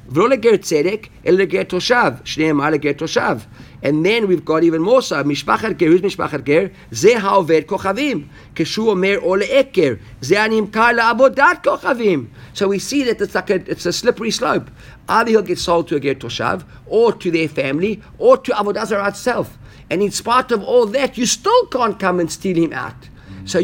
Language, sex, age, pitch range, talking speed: English, male, 50-69, 140-205 Hz, 195 wpm